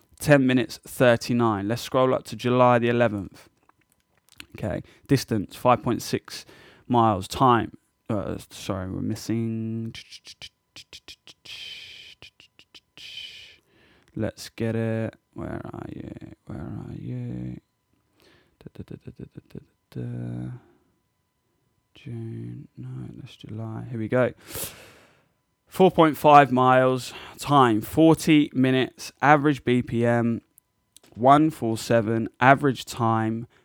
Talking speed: 80 wpm